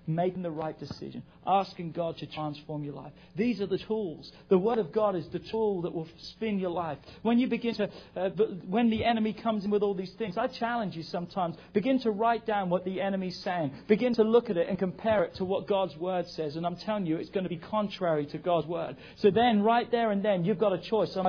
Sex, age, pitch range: male, 40-59, 180-235 Hz